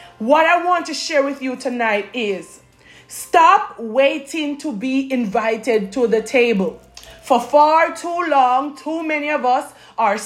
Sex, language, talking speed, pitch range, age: female, English, 150 wpm, 240-315 Hz, 20-39